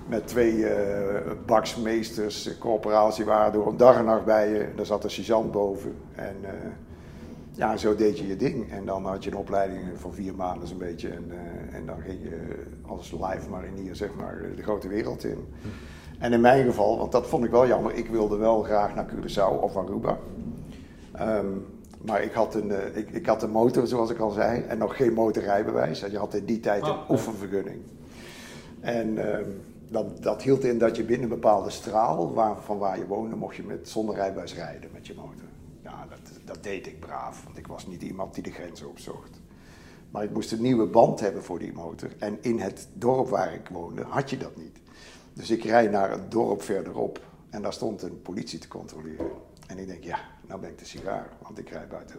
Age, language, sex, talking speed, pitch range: 50-69, Dutch, male, 215 wpm, 90-110 Hz